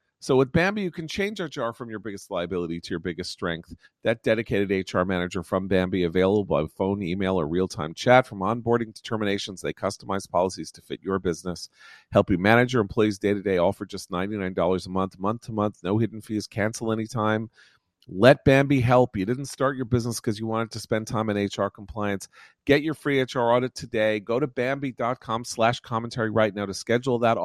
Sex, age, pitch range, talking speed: male, 40-59, 100-130 Hz, 195 wpm